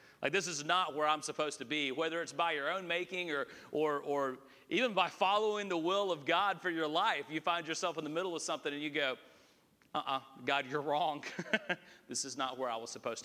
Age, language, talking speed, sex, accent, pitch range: 40-59, English, 225 wpm, male, American, 140-170 Hz